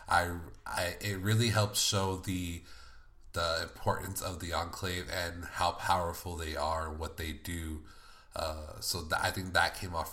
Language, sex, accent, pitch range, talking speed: English, male, American, 85-100 Hz, 165 wpm